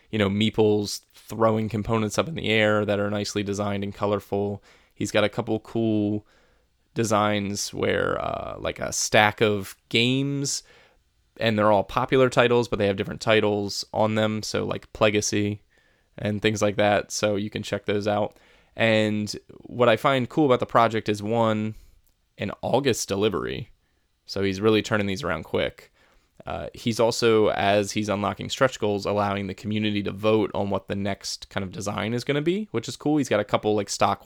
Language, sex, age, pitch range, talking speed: English, male, 20-39, 100-115 Hz, 185 wpm